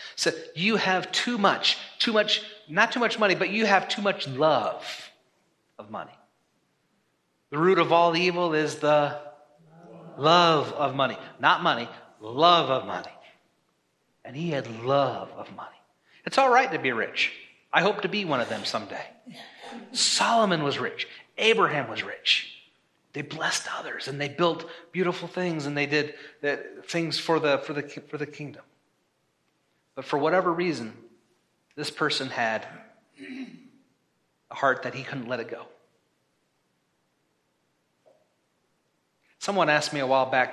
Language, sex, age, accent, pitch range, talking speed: English, male, 40-59, American, 150-205 Hz, 150 wpm